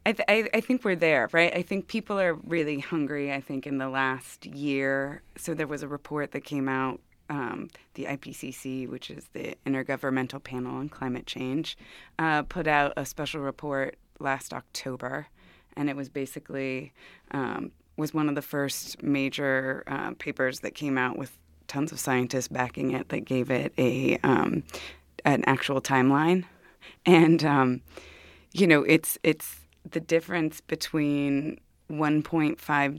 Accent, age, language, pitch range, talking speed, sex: American, 20-39, English, 135-155 Hz, 155 wpm, female